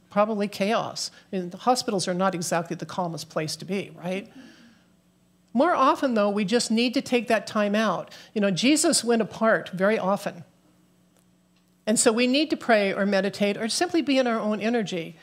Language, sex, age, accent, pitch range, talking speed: English, male, 50-69, American, 180-230 Hz, 180 wpm